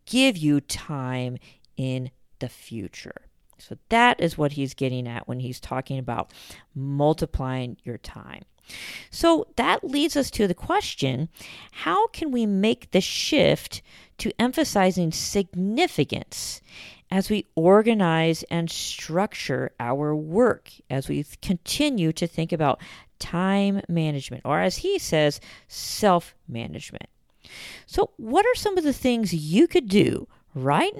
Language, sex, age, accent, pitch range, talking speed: English, female, 40-59, American, 145-215 Hz, 130 wpm